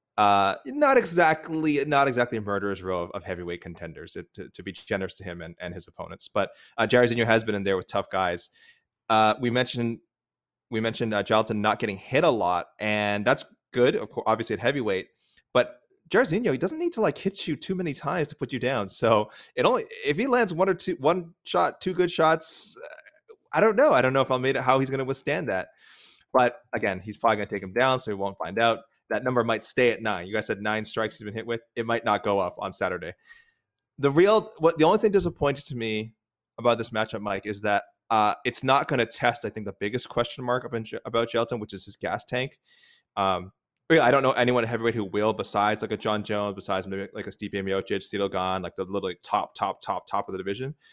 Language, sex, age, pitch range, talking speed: English, male, 20-39, 105-140 Hz, 240 wpm